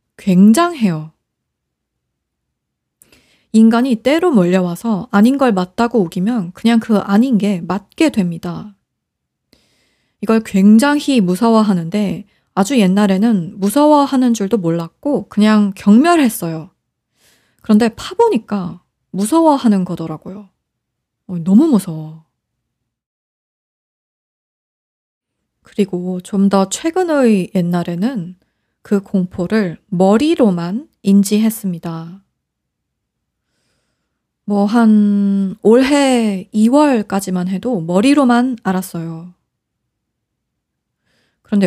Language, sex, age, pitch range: Korean, female, 20-39, 185-235 Hz